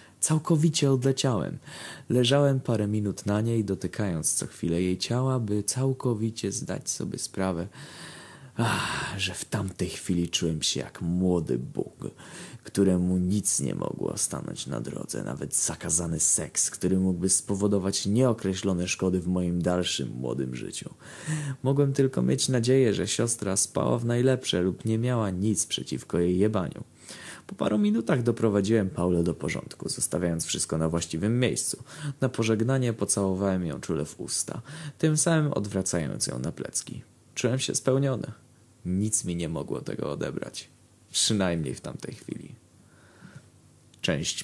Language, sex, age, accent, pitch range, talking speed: Polish, male, 20-39, native, 90-125 Hz, 135 wpm